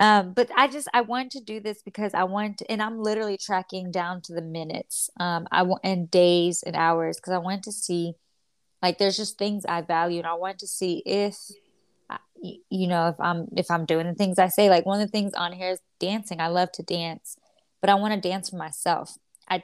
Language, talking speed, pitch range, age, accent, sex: English, 225 wpm, 175-200 Hz, 20-39, American, female